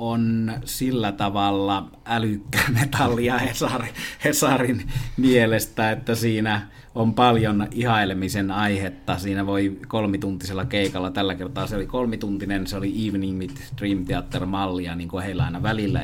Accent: native